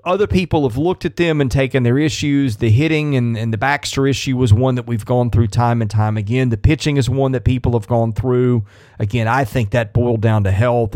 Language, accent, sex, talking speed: English, American, male, 240 wpm